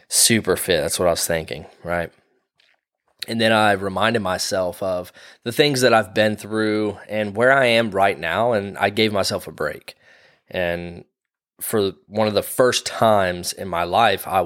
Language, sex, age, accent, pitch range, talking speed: English, male, 20-39, American, 95-125 Hz, 180 wpm